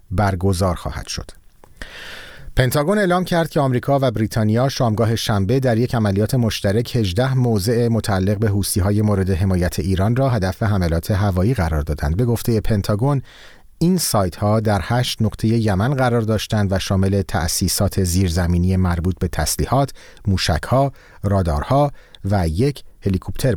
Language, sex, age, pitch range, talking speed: Persian, male, 40-59, 95-120 Hz, 135 wpm